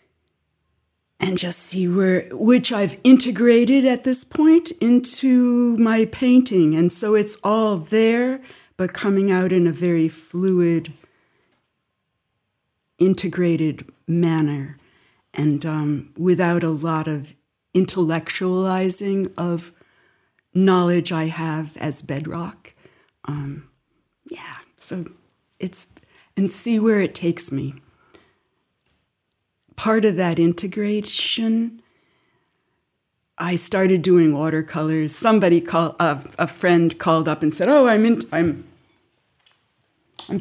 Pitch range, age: 160-215 Hz, 60-79